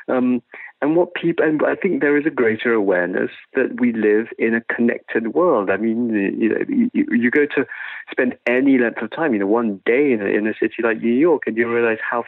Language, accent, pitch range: English, British, 100-145 Hz